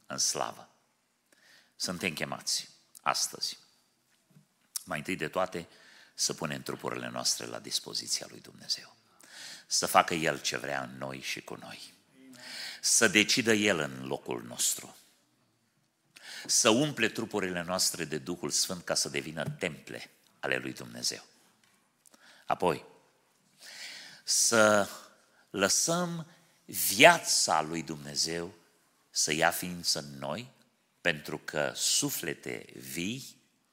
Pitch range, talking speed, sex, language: 70-95 Hz, 110 wpm, male, Romanian